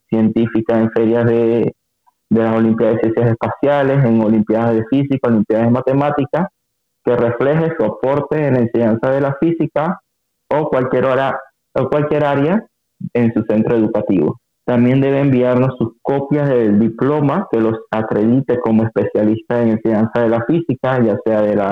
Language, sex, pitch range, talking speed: Spanish, male, 115-135 Hz, 155 wpm